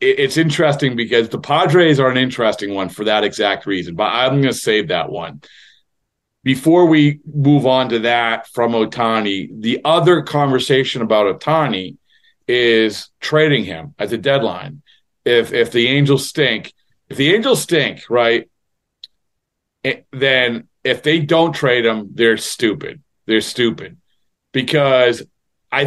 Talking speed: 140 wpm